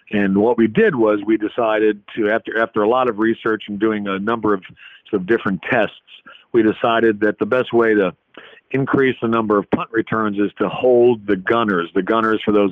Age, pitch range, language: 50-69, 100-115 Hz, English